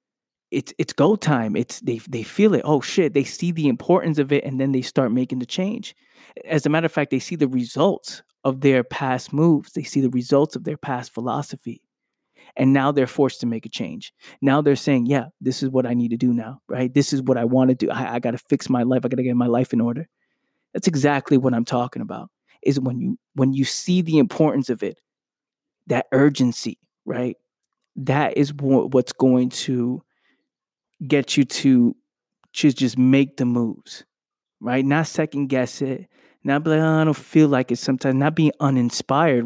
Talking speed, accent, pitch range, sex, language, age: 210 wpm, American, 130-155 Hz, male, English, 20-39